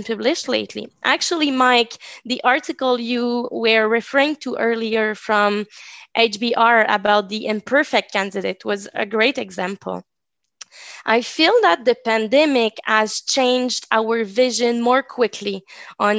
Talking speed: 120 wpm